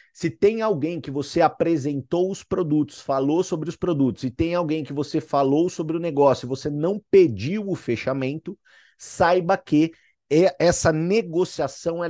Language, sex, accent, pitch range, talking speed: Portuguese, male, Brazilian, 145-180 Hz, 155 wpm